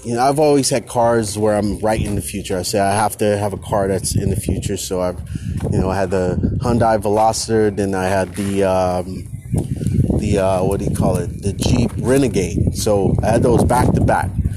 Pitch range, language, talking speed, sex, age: 100-140 Hz, English, 225 wpm, male, 30-49